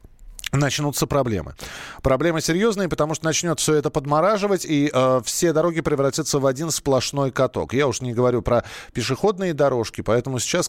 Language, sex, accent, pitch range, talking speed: Russian, male, native, 130-170 Hz, 155 wpm